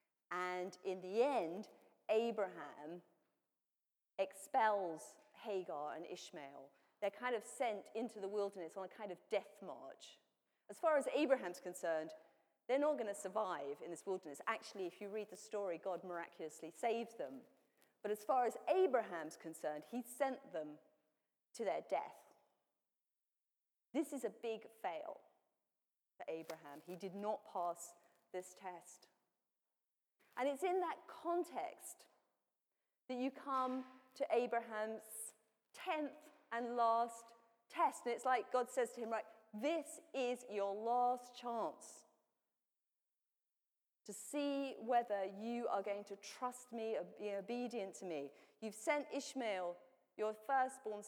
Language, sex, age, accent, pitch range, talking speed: English, female, 40-59, British, 185-250 Hz, 135 wpm